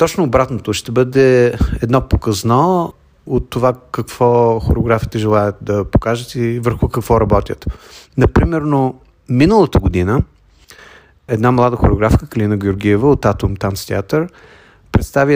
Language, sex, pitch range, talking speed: Bulgarian, male, 105-125 Hz, 115 wpm